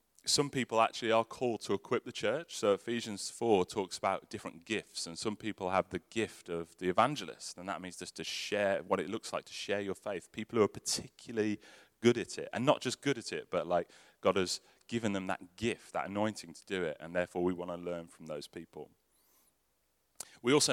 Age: 30-49